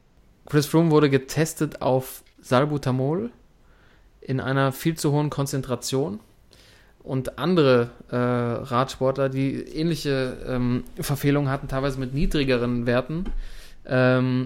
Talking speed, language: 110 wpm, German